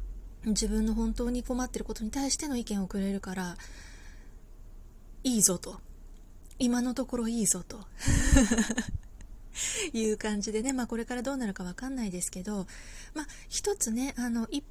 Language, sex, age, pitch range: Japanese, female, 20-39, 195-240 Hz